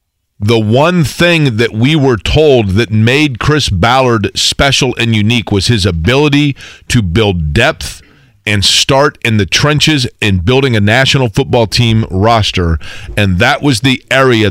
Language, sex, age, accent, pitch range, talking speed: English, male, 40-59, American, 100-130 Hz, 155 wpm